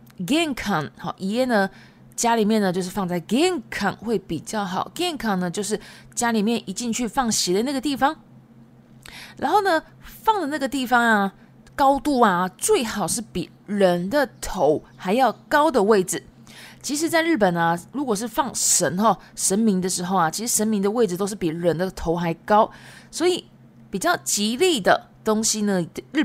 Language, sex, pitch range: Japanese, female, 175-260 Hz